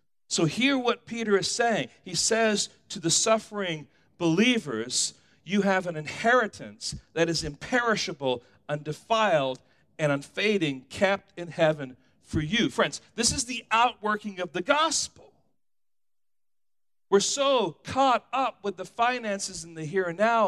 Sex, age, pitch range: male, 40-59, 165-245 Hz